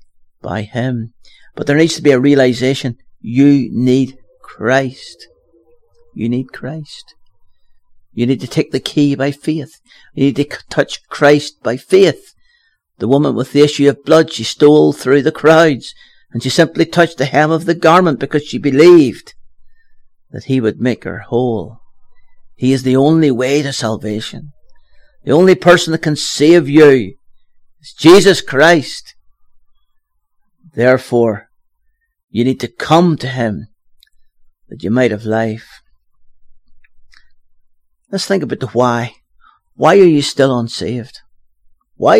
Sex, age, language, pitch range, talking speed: male, 50-69, English, 115-155 Hz, 140 wpm